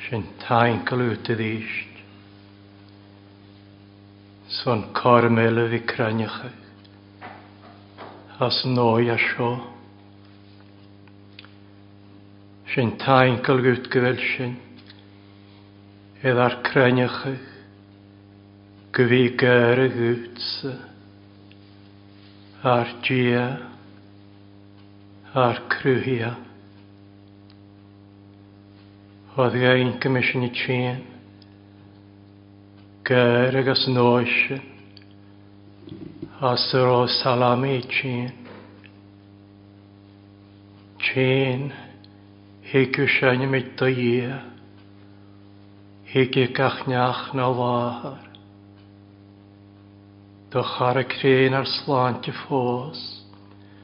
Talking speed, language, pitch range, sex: 30 wpm, English, 100-125 Hz, male